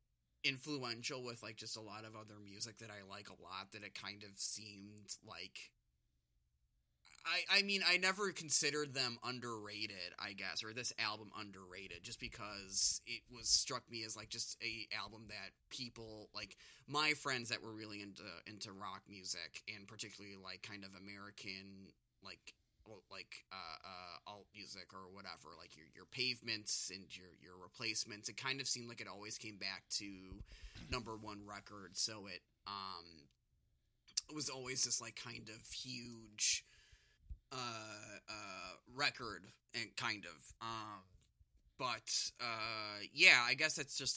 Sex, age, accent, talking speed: male, 20-39, American, 160 wpm